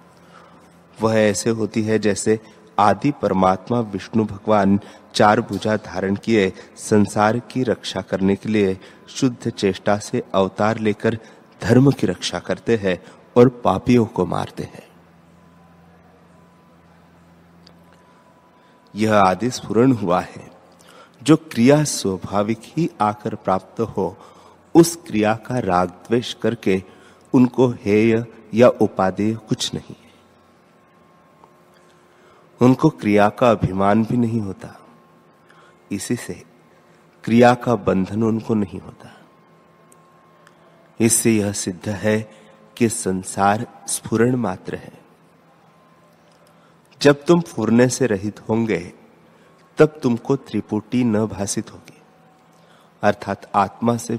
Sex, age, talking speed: male, 30-49, 105 wpm